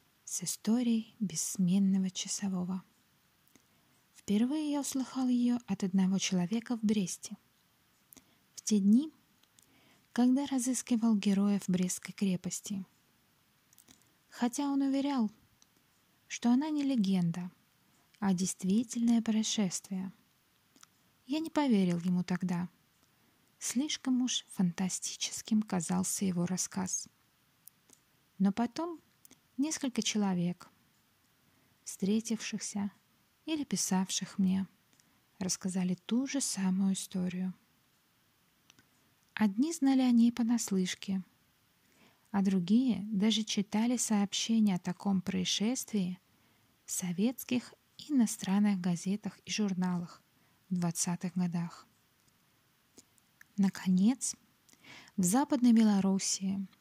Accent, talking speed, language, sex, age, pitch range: native, 85 wpm, Russian, female, 20-39, 185-235 Hz